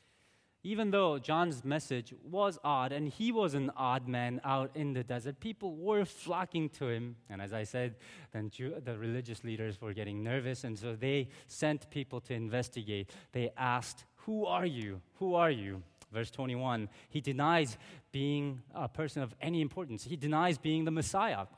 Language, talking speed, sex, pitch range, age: English, 170 wpm, male, 115-165 Hz, 20-39